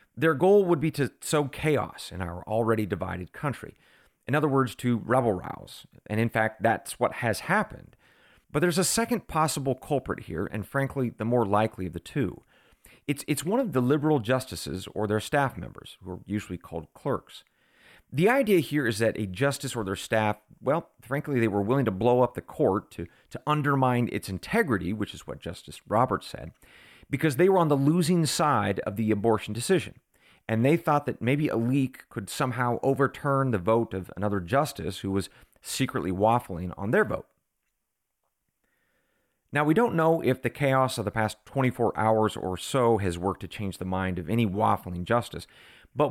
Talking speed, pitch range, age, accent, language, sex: 190 wpm, 105-145 Hz, 40-59, American, English, male